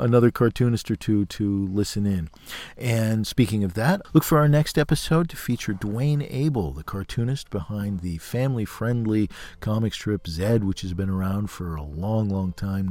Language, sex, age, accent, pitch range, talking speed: English, male, 40-59, American, 95-125 Hz, 170 wpm